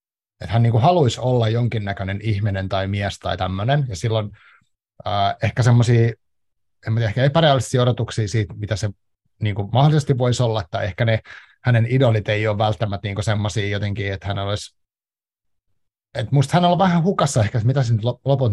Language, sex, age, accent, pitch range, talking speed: Finnish, male, 30-49, native, 105-125 Hz, 155 wpm